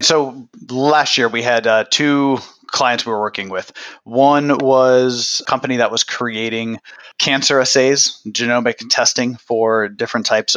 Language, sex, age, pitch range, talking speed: English, male, 30-49, 115-140 Hz, 150 wpm